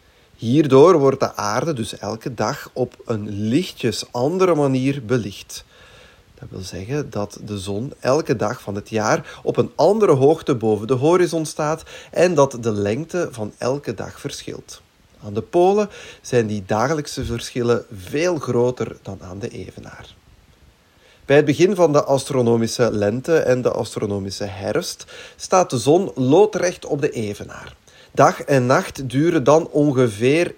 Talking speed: 150 wpm